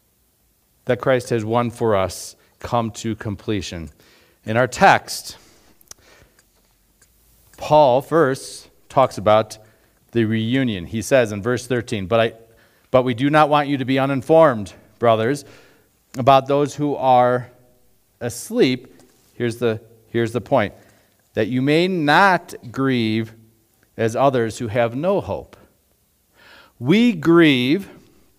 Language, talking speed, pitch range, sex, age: English, 125 wpm, 115-150 Hz, male, 50-69